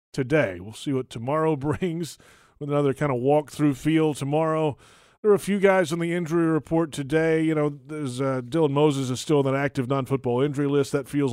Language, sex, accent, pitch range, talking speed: English, male, American, 135-160 Hz, 210 wpm